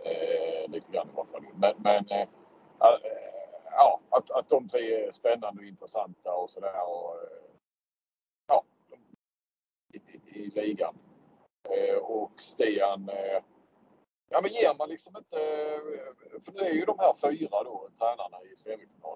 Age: 50-69